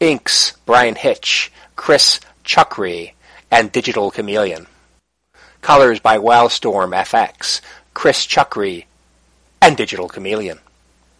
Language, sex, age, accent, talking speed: English, male, 40-59, American, 90 wpm